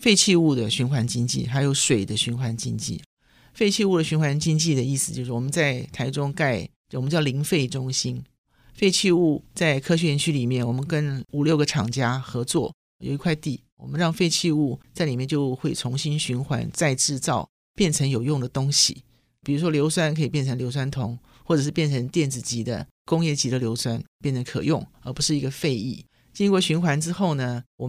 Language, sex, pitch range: Chinese, male, 125-155 Hz